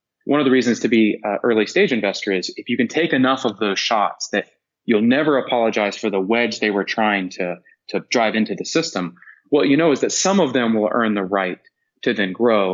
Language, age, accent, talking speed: English, 30-49, American, 235 wpm